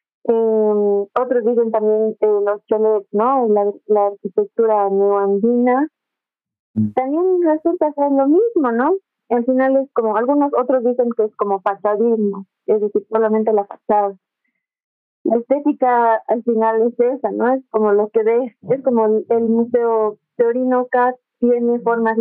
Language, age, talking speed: Spanish, 30-49, 145 wpm